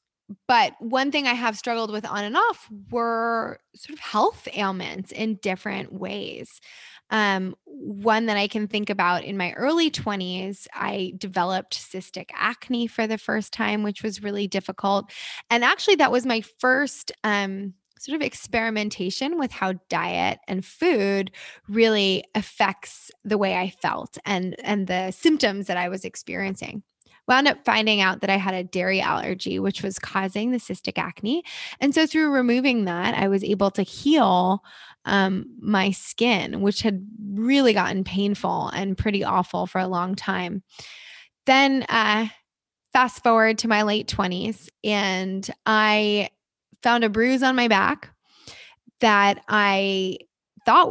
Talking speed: 155 wpm